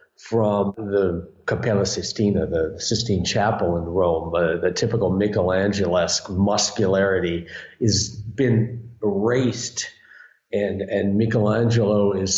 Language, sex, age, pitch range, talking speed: English, male, 50-69, 105-125 Hz, 105 wpm